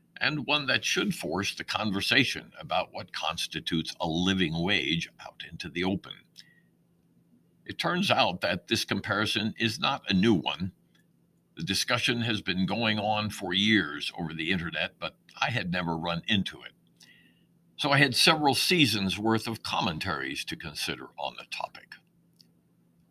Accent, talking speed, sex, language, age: American, 155 wpm, male, English, 60-79